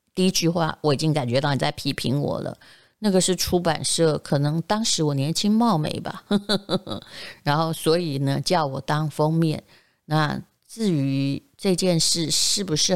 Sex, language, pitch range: female, Chinese, 150-185 Hz